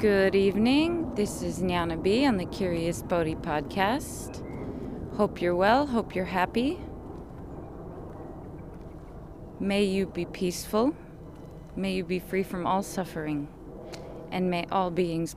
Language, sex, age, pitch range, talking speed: English, female, 20-39, 165-195 Hz, 125 wpm